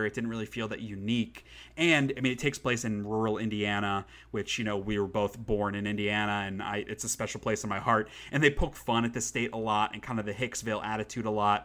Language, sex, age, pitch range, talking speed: English, male, 30-49, 105-125 Hz, 260 wpm